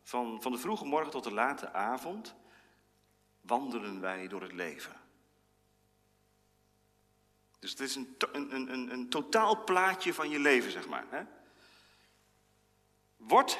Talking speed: 120 wpm